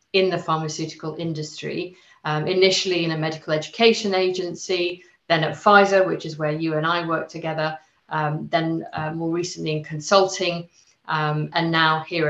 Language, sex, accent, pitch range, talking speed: English, female, British, 160-190 Hz, 160 wpm